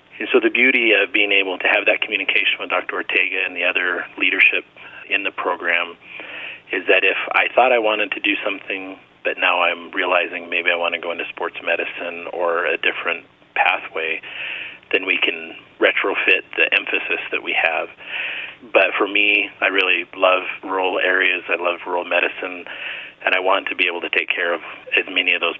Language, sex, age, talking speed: English, male, 30-49, 190 wpm